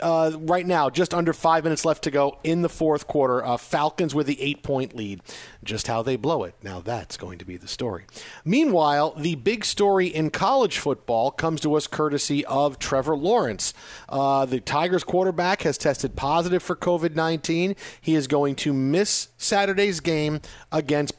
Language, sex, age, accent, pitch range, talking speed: English, male, 40-59, American, 135-165 Hz, 180 wpm